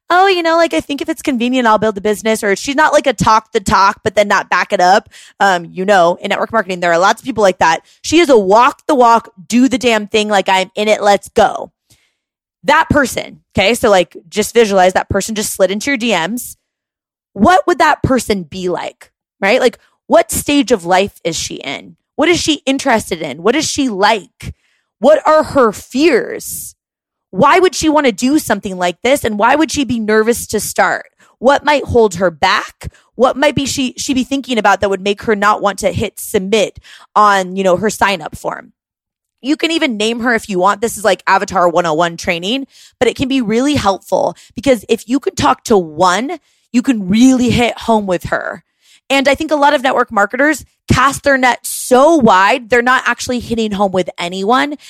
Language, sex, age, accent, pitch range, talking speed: English, female, 20-39, American, 200-275 Hz, 215 wpm